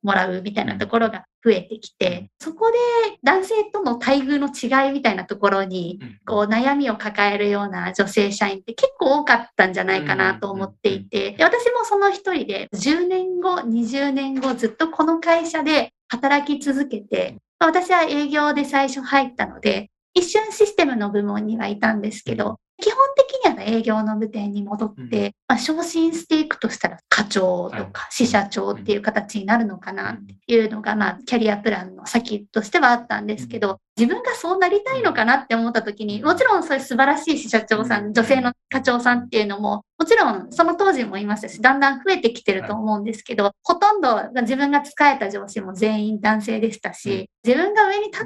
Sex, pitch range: female, 210-295 Hz